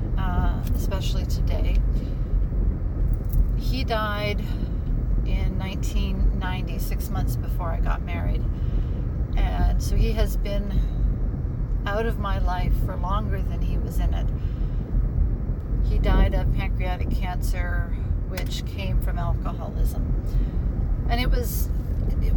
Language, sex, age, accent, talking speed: English, female, 40-59, American, 110 wpm